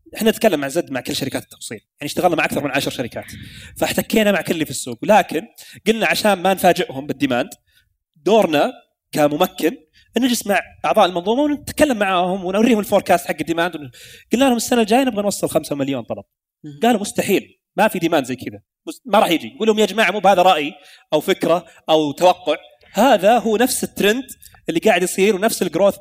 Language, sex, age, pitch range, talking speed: Arabic, male, 30-49, 145-215 Hz, 180 wpm